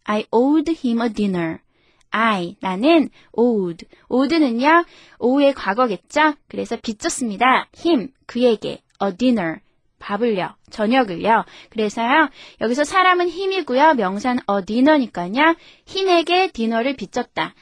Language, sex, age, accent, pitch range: Korean, female, 20-39, native, 210-305 Hz